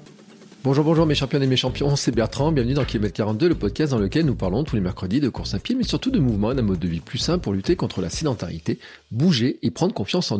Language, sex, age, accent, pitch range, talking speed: French, male, 40-59, French, 100-135 Hz, 265 wpm